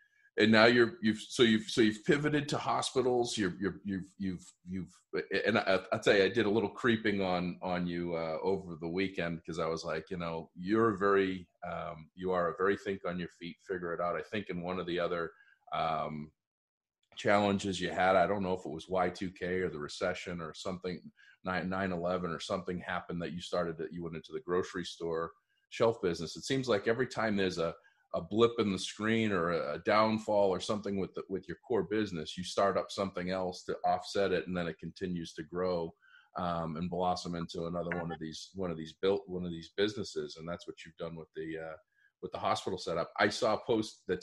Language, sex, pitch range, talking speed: English, male, 85-105 Hz, 215 wpm